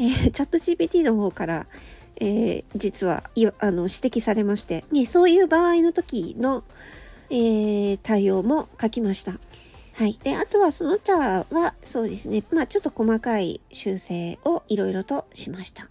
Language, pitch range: Japanese, 210-340 Hz